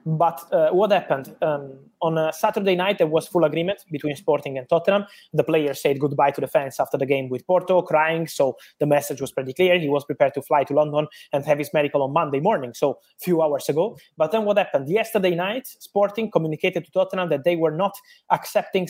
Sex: male